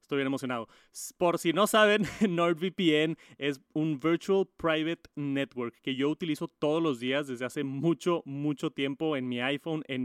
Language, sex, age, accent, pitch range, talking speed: Spanish, male, 30-49, Mexican, 135-165 Hz, 165 wpm